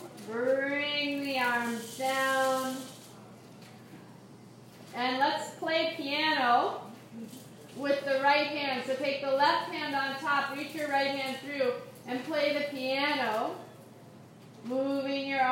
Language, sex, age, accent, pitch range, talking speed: English, female, 30-49, American, 255-290 Hz, 115 wpm